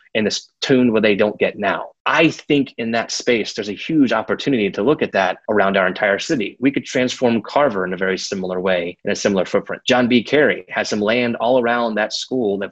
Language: English